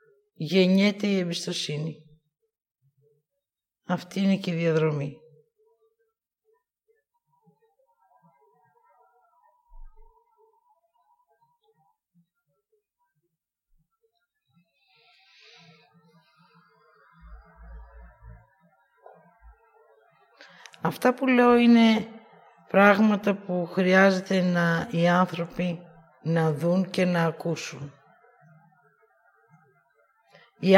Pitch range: 165-245 Hz